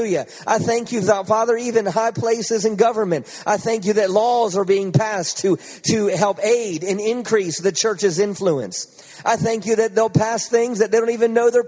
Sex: male